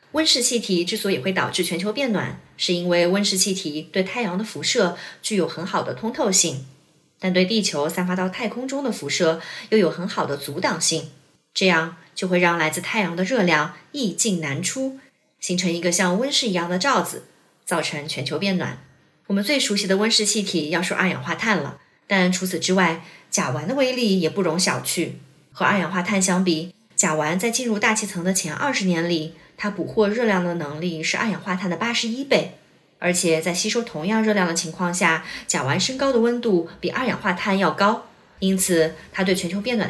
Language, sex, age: Chinese, female, 30-49